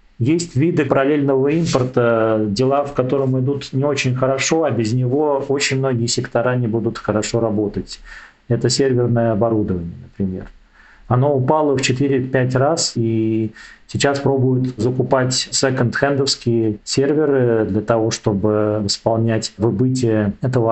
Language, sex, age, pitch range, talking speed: Russian, male, 40-59, 115-140 Hz, 120 wpm